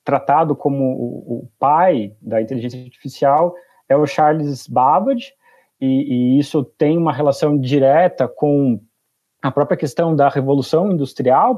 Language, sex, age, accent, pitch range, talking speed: Portuguese, male, 30-49, Brazilian, 130-170 Hz, 130 wpm